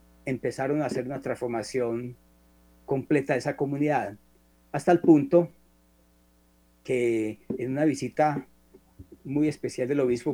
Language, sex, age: Spanish, male, 40-59